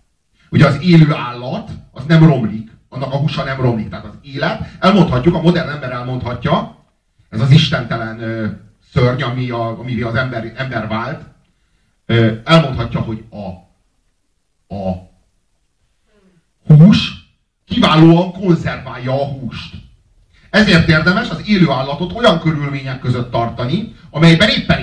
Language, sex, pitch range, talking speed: Hungarian, male, 110-165 Hz, 120 wpm